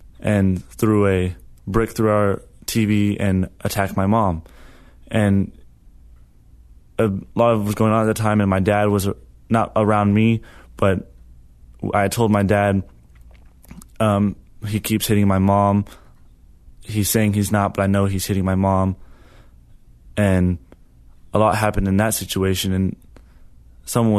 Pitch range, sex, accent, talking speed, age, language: 85-105 Hz, male, American, 150 wpm, 20-39, English